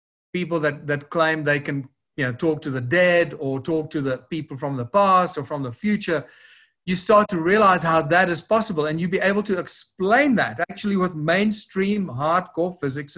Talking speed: 200 wpm